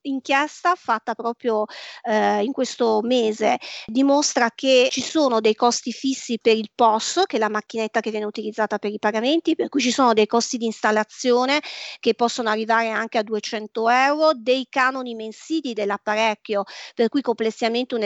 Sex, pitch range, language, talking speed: female, 215-270 Hz, Italian, 165 wpm